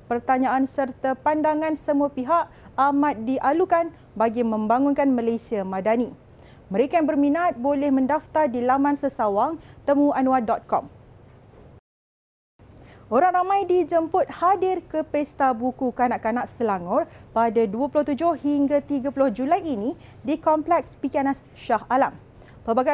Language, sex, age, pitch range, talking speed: Malay, female, 30-49, 255-320 Hz, 105 wpm